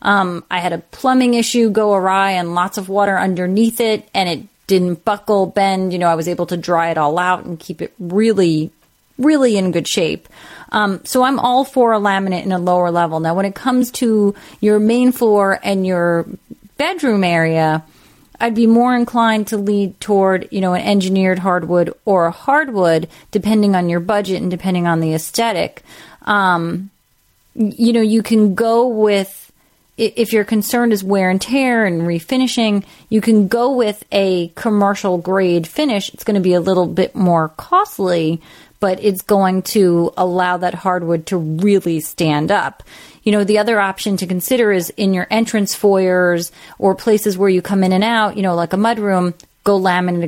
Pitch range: 175-215 Hz